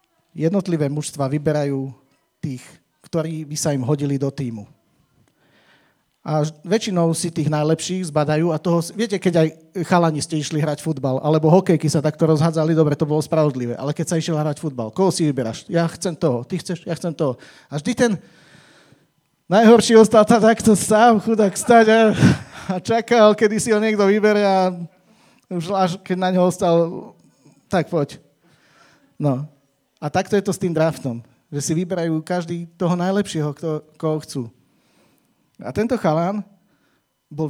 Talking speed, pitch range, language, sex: 160 wpm, 150-185 Hz, Slovak, male